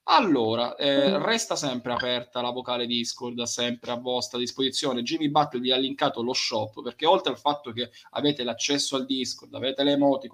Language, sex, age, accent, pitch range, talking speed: Italian, male, 20-39, native, 120-155 Hz, 180 wpm